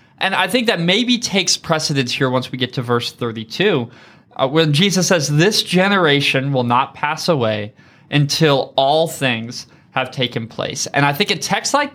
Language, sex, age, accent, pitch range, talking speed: English, male, 20-39, American, 130-170 Hz, 180 wpm